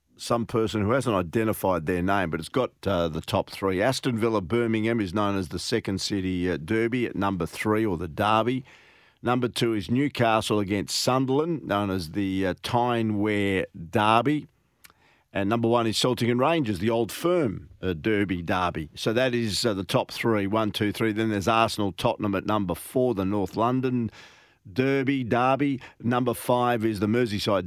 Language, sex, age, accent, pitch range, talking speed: English, male, 50-69, Australian, 100-120 Hz, 180 wpm